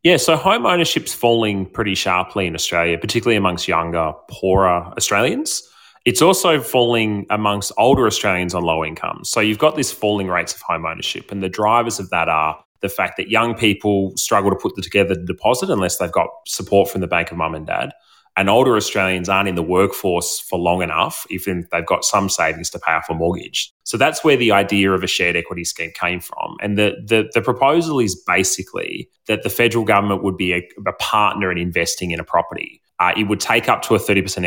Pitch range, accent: 90-115 Hz, Australian